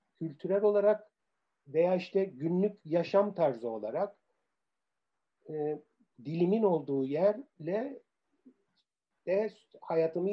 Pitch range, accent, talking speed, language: 130-200 Hz, native, 80 wpm, Turkish